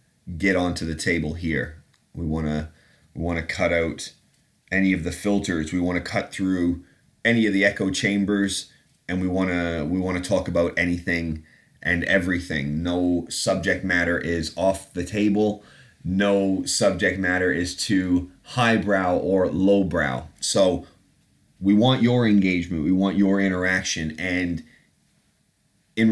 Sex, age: male, 30-49